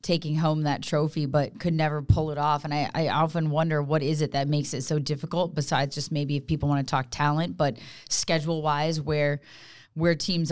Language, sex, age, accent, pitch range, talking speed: English, female, 20-39, American, 140-165 Hz, 210 wpm